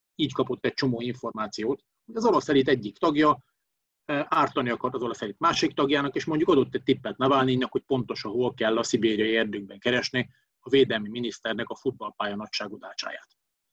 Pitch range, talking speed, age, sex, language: 120-140 Hz, 165 wpm, 30-49, male, Hungarian